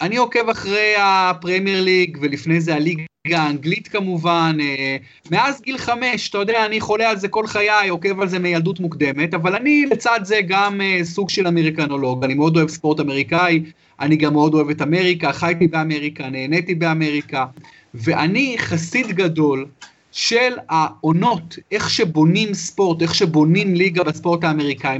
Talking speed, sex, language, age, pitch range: 150 wpm, male, Hebrew, 30-49, 165-225 Hz